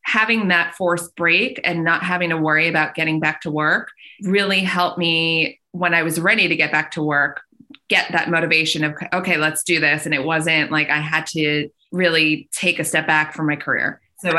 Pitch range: 155-175 Hz